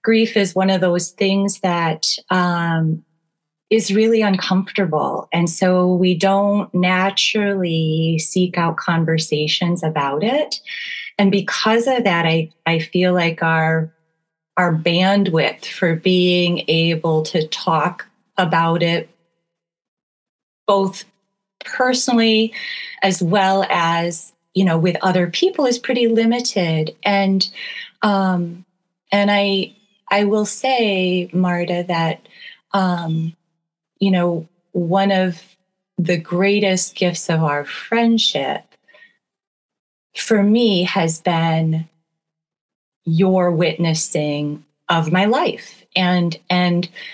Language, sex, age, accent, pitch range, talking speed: English, female, 30-49, American, 165-195 Hz, 105 wpm